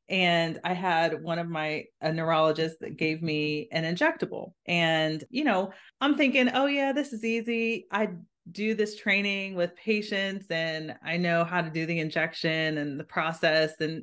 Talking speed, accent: 175 wpm, American